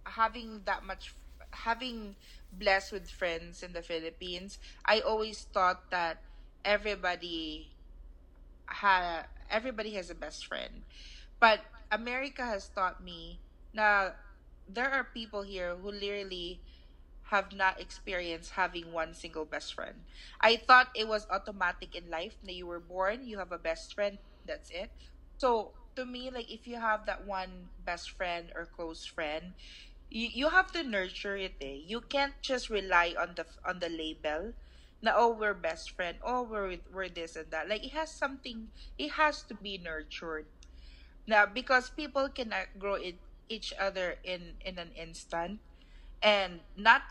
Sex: female